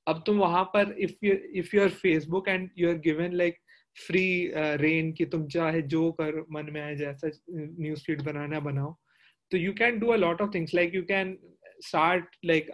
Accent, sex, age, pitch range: native, male, 30-49, 155-175 Hz